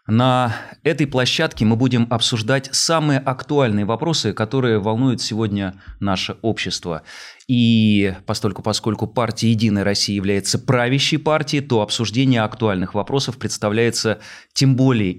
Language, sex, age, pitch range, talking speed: Russian, male, 30-49, 100-130 Hz, 120 wpm